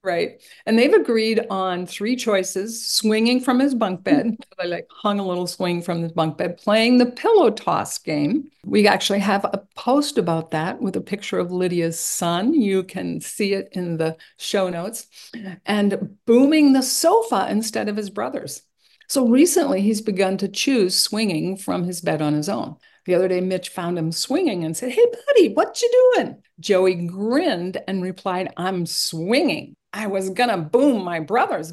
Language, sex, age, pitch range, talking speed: English, female, 50-69, 185-255 Hz, 180 wpm